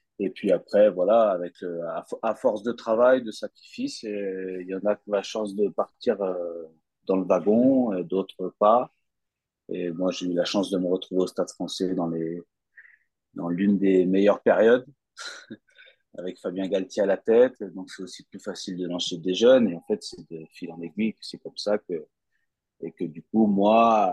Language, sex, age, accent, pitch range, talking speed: French, male, 30-49, French, 90-125 Hz, 195 wpm